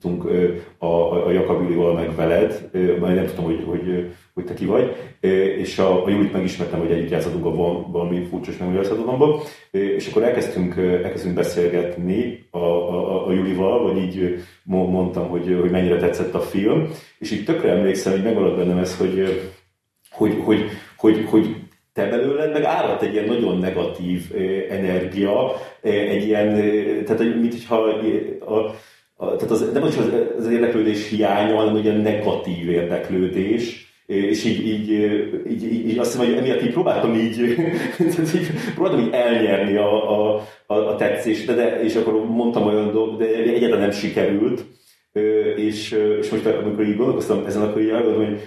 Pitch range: 90-110 Hz